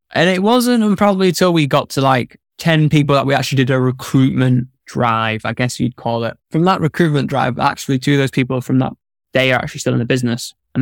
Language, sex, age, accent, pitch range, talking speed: English, male, 10-29, British, 130-150 Hz, 235 wpm